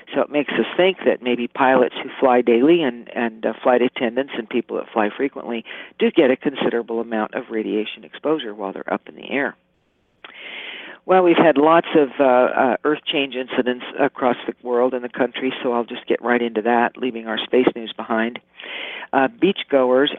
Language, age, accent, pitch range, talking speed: English, 50-69, American, 120-140 Hz, 195 wpm